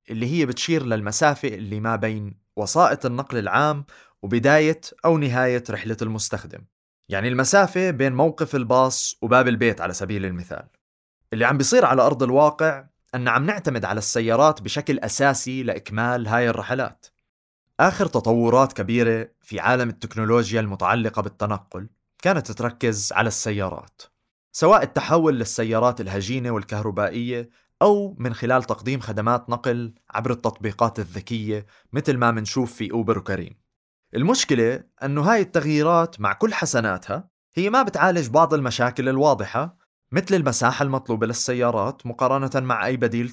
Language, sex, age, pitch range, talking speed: Arabic, male, 20-39, 110-145 Hz, 130 wpm